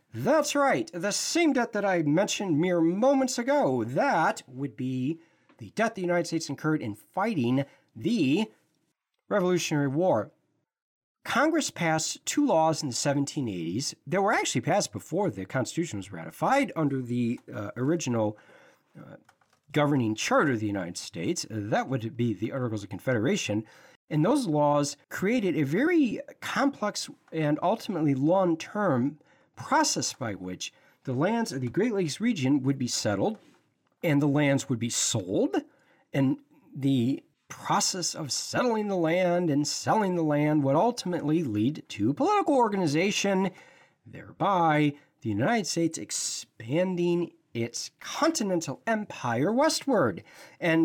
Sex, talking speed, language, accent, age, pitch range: male, 135 wpm, English, American, 40-59, 135-200 Hz